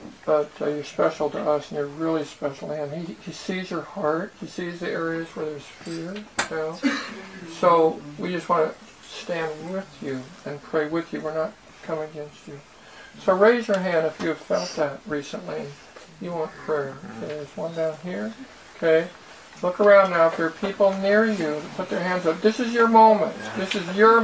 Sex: male